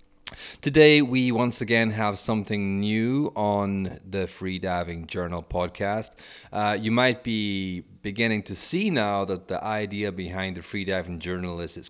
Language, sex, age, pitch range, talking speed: English, male, 30-49, 90-105 Hz, 145 wpm